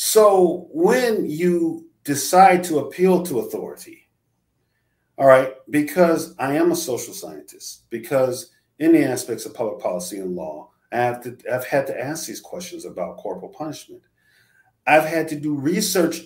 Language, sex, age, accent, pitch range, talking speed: English, male, 40-59, American, 115-160 Hz, 145 wpm